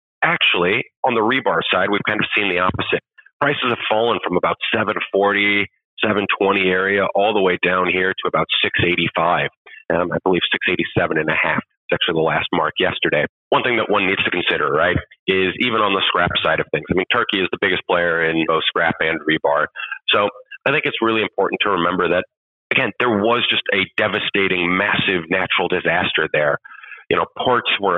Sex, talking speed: male, 195 wpm